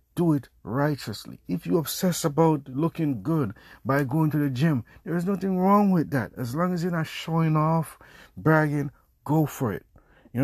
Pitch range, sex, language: 125-165 Hz, male, English